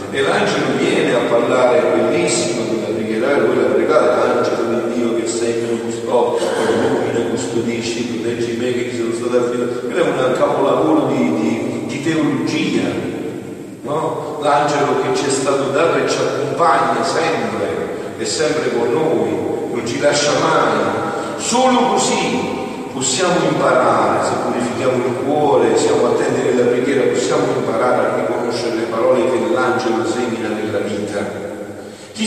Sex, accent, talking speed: male, native, 150 wpm